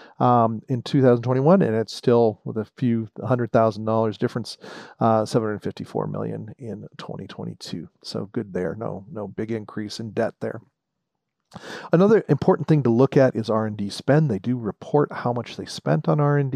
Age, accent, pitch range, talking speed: 40-59, American, 110-150 Hz, 195 wpm